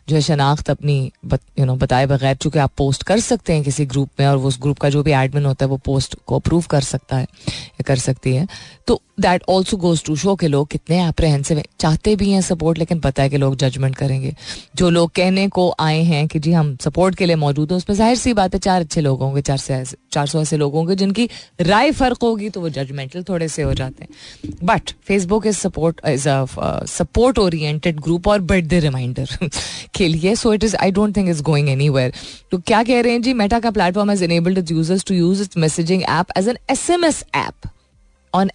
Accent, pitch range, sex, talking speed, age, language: native, 145-200 Hz, female, 225 wpm, 20-39, Hindi